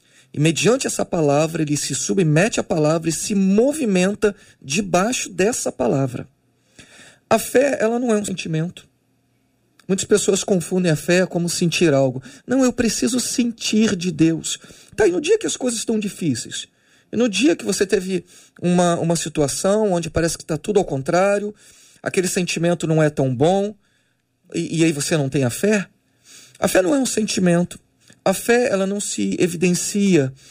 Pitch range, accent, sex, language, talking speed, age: 155-210 Hz, Brazilian, male, Portuguese, 170 wpm, 40-59